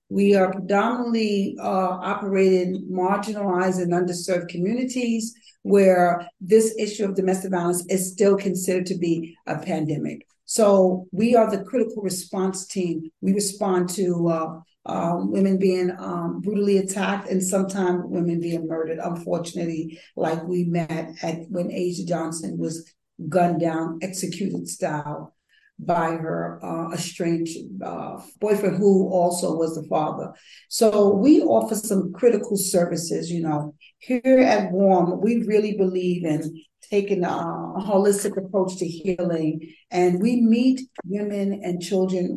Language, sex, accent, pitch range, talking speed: English, female, American, 170-200 Hz, 135 wpm